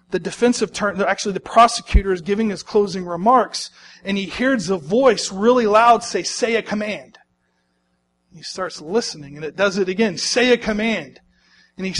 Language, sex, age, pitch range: English, male, 40-59, 180-250 Hz